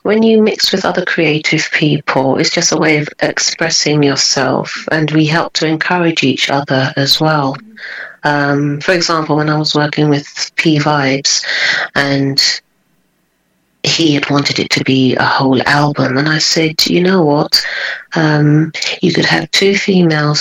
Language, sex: English, female